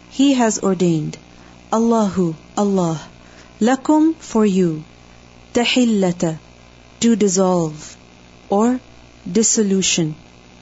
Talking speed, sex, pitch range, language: 75 wpm, female, 165-230 Hz, English